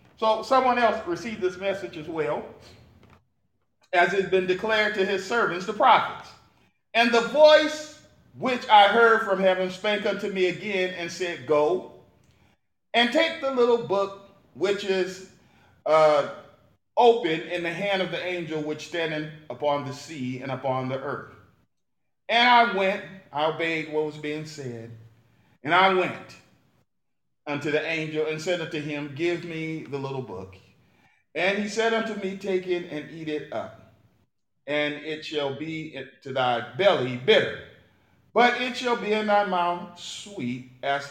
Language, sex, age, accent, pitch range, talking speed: English, male, 40-59, American, 140-205 Hz, 160 wpm